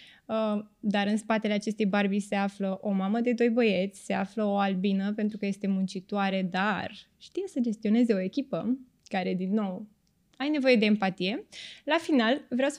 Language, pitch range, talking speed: Romanian, 200-260 Hz, 180 wpm